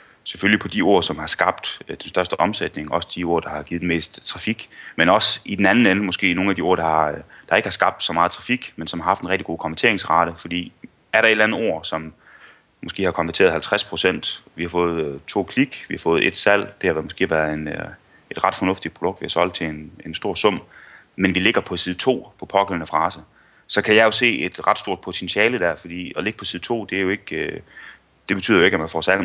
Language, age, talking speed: Danish, 30-49, 250 wpm